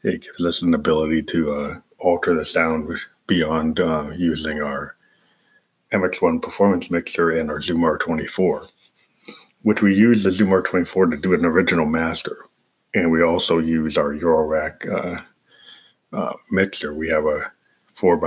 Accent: American